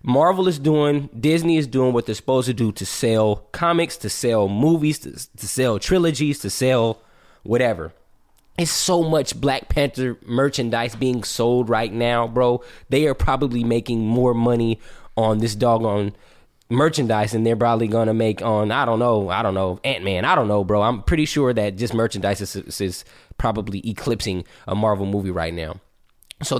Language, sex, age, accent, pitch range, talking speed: English, male, 20-39, American, 105-130 Hz, 175 wpm